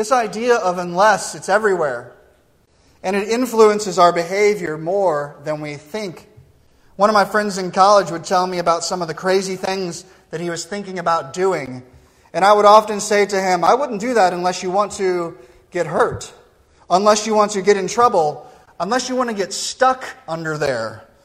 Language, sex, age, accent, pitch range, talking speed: English, male, 30-49, American, 165-210 Hz, 190 wpm